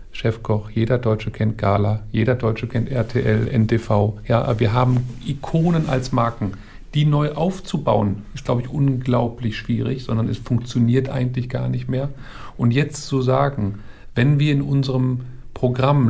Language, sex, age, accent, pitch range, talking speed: German, male, 50-69, German, 110-135 Hz, 150 wpm